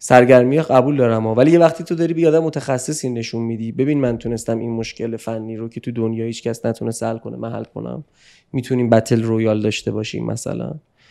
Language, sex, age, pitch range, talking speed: Persian, male, 20-39, 115-150 Hz, 195 wpm